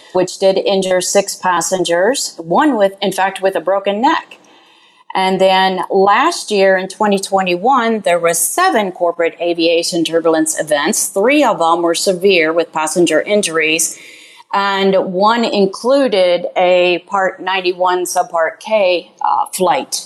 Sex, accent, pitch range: female, American, 180-220 Hz